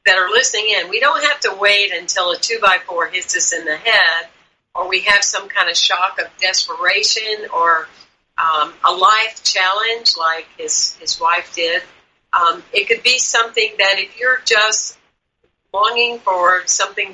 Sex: female